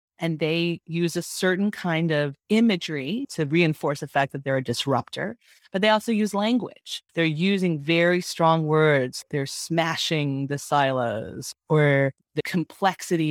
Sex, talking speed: female, 150 wpm